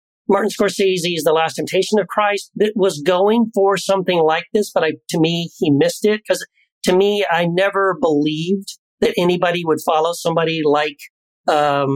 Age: 40-59